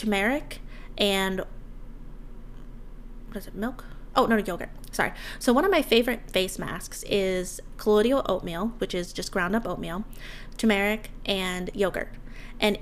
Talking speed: 140 wpm